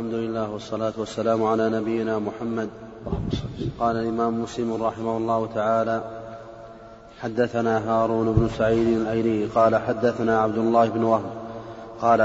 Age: 30-49